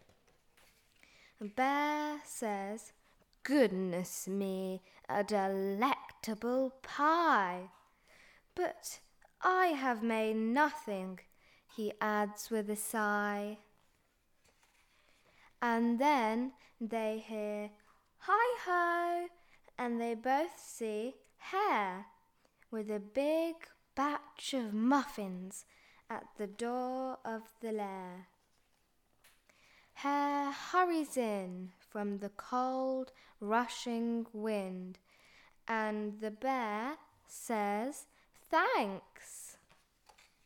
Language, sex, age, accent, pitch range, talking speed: English, female, 20-39, British, 205-280 Hz, 75 wpm